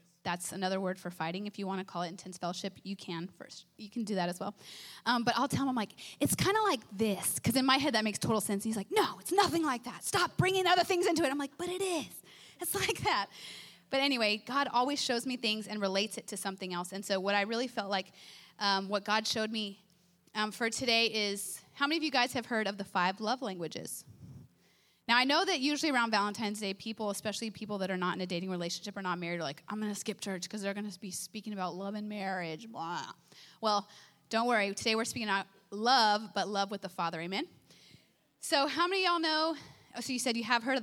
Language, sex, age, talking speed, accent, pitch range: English, female, 30-49, 250 wpm, American, 190-245 Hz